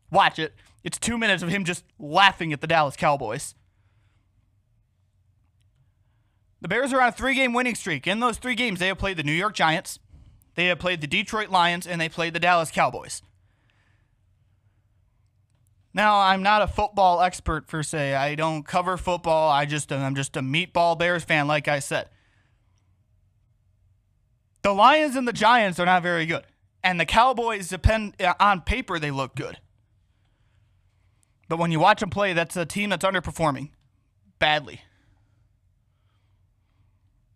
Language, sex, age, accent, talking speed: English, male, 20-39, American, 160 wpm